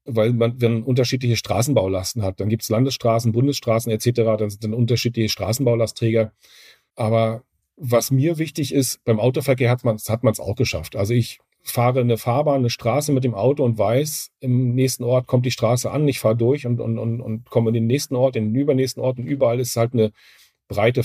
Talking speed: 205 wpm